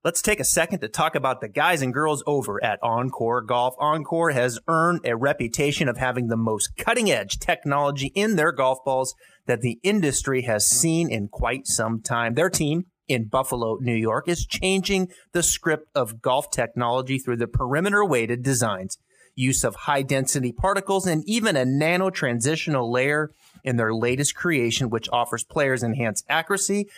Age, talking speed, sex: 30-49, 165 wpm, male